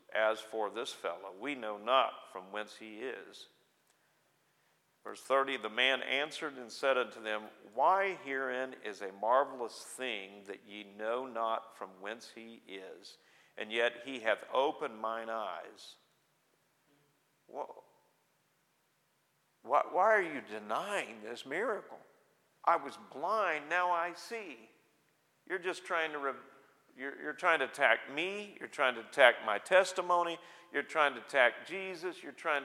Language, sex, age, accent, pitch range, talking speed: English, male, 50-69, American, 115-160 Hz, 140 wpm